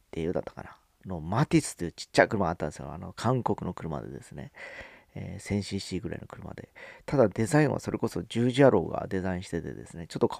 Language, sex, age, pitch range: Japanese, male, 40-59, 95-125 Hz